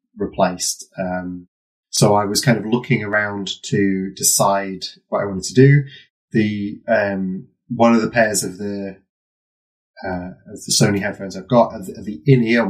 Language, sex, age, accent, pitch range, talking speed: English, male, 20-39, British, 95-125 Hz, 170 wpm